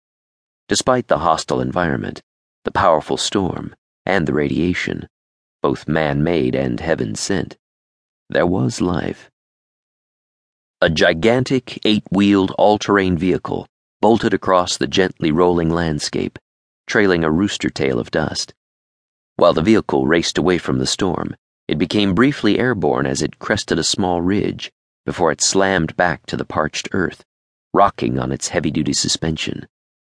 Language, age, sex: English, 40-59, male